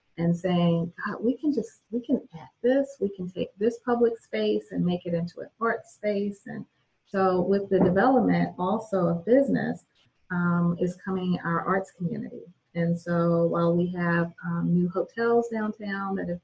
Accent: American